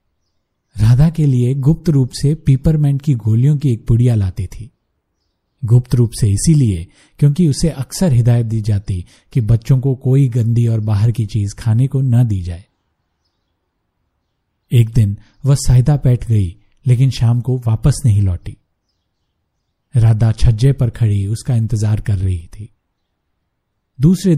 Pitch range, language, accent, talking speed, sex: 100-130 Hz, Hindi, native, 150 wpm, male